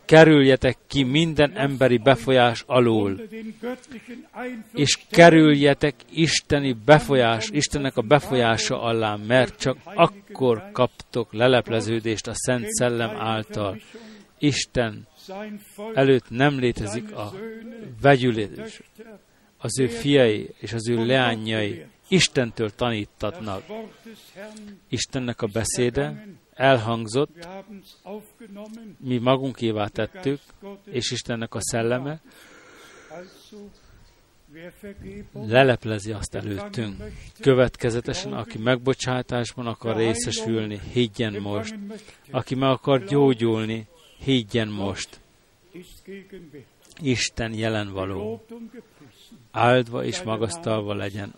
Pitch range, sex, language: 115-165 Hz, male, Hungarian